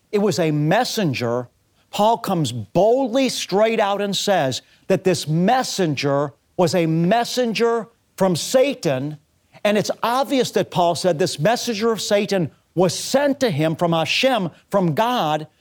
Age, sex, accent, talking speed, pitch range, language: 50-69, male, American, 140 wpm, 160-225 Hz, English